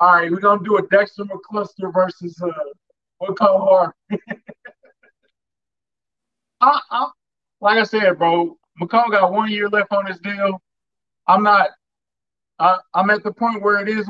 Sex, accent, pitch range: male, American, 170-205 Hz